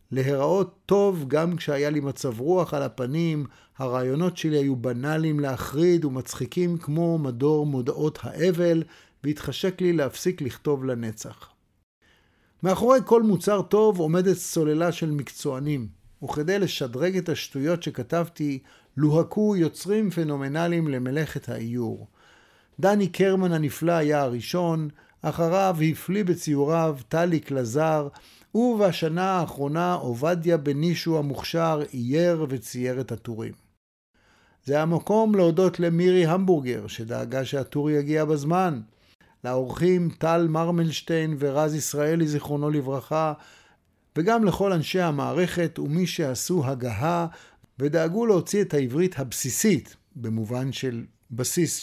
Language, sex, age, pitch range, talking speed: Hebrew, male, 50-69, 130-170 Hz, 110 wpm